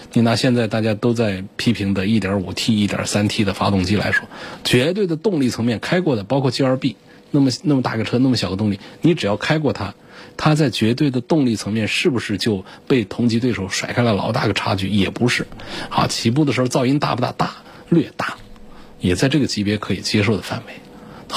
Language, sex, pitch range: Chinese, male, 100-130 Hz